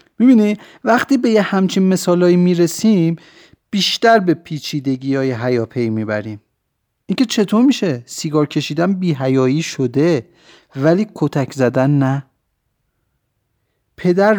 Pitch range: 135-205 Hz